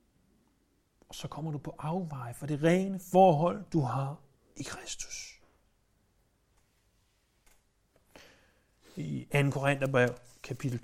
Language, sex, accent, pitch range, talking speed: Danish, male, native, 125-185 Hz, 100 wpm